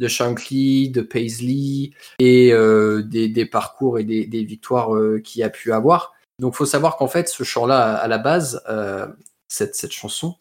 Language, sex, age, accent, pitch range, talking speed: French, male, 20-39, French, 115-135 Hz, 190 wpm